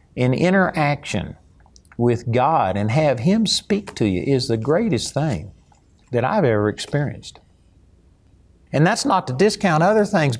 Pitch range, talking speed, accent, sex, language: 100-150 Hz, 145 wpm, American, male, English